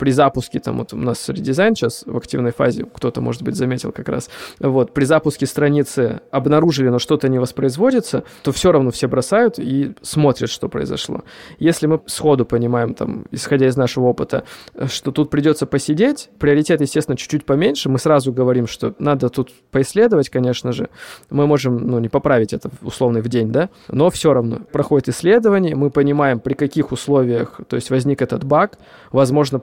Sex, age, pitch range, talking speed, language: male, 20-39, 125-145 Hz, 180 wpm, Russian